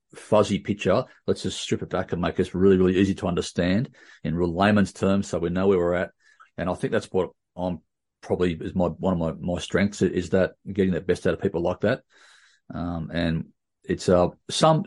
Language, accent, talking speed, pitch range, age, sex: English, Australian, 220 wpm, 90-105 Hz, 40-59, male